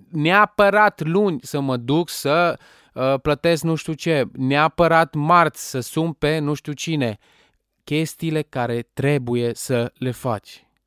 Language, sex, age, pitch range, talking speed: Romanian, male, 20-39, 130-165 Hz, 130 wpm